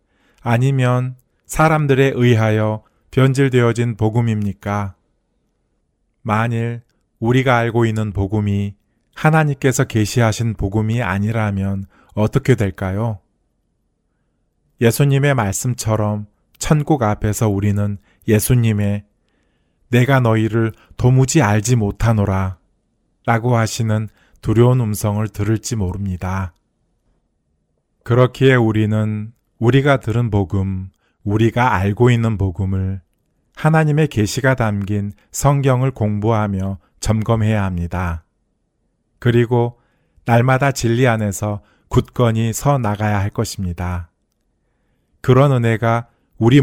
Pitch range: 100-120 Hz